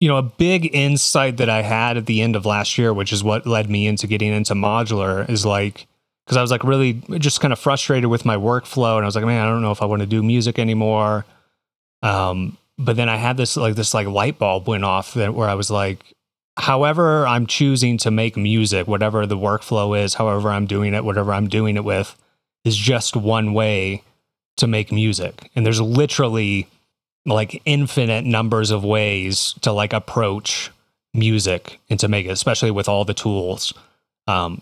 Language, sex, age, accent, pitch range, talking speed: English, male, 30-49, American, 100-120 Hz, 205 wpm